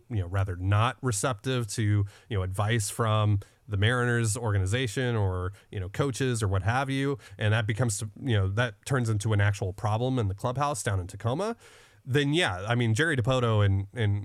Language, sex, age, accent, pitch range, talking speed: English, male, 30-49, American, 105-135 Hz, 195 wpm